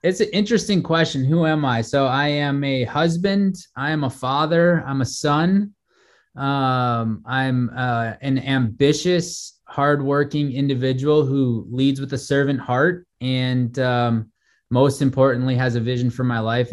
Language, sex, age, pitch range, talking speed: English, male, 20-39, 115-135 Hz, 150 wpm